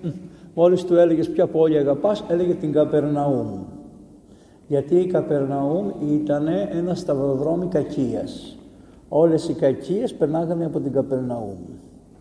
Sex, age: male, 60-79